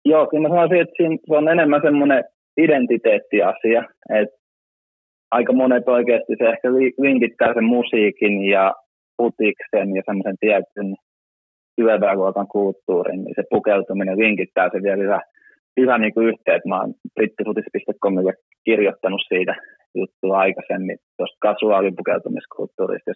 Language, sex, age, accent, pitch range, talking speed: Finnish, male, 20-39, native, 95-115 Hz, 115 wpm